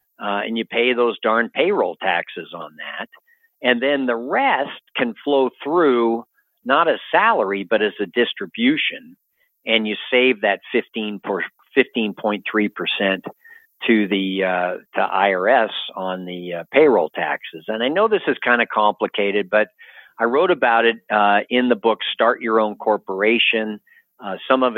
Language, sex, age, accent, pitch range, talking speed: English, male, 50-69, American, 105-125 Hz, 155 wpm